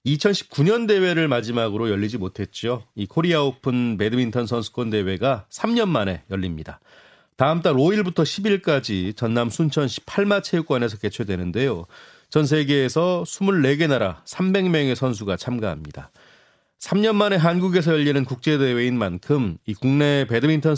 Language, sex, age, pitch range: Korean, male, 30-49, 115-165 Hz